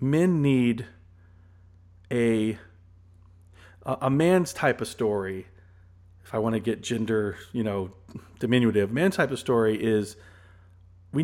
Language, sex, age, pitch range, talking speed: English, male, 40-59, 100-145 Hz, 125 wpm